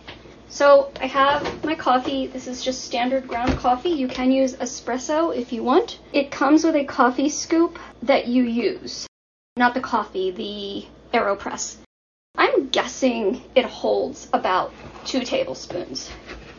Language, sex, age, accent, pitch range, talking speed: English, female, 40-59, American, 245-290 Hz, 140 wpm